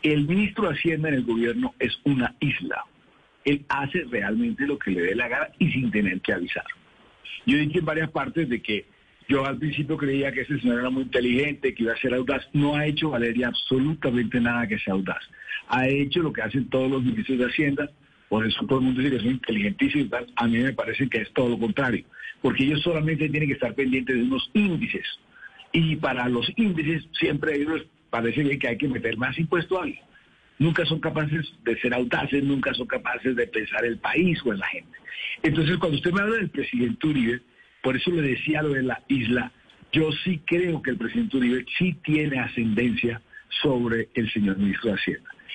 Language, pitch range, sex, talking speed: Spanish, 120-155 Hz, male, 210 wpm